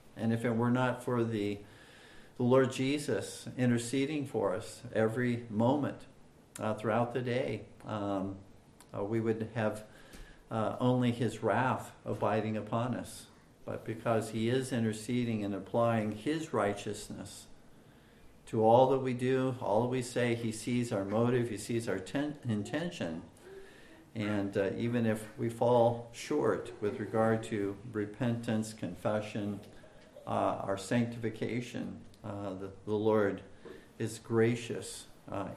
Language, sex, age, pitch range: English, male, 50-69, 105-125 Hz